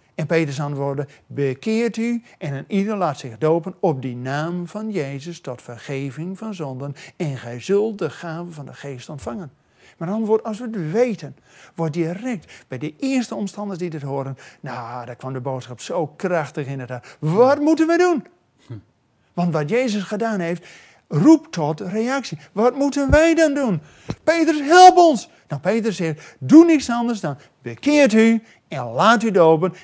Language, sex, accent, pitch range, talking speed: Dutch, male, Dutch, 145-220 Hz, 170 wpm